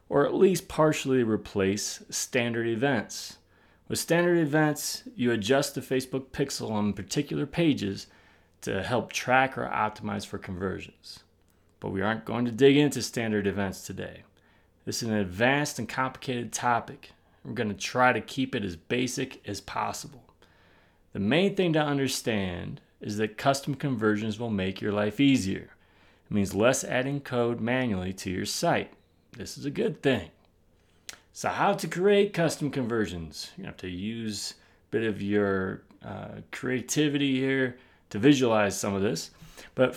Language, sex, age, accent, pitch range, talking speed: English, male, 30-49, American, 100-135 Hz, 160 wpm